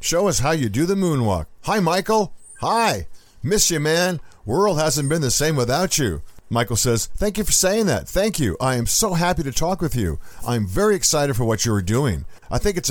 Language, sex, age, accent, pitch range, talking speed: English, male, 50-69, American, 100-160 Hz, 230 wpm